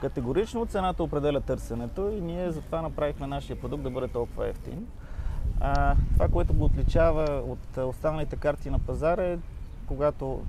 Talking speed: 150 wpm